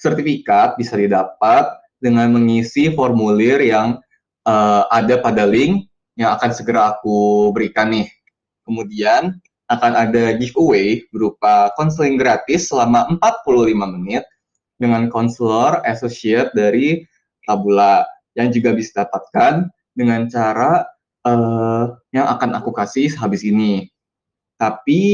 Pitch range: 110-135 Hz